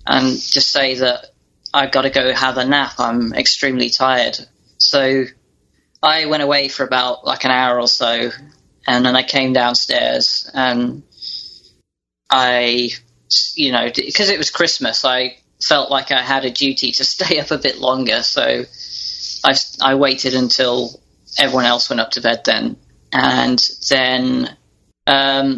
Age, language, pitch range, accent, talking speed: 20-39, English, 125-140 Hz, British, 155 wpm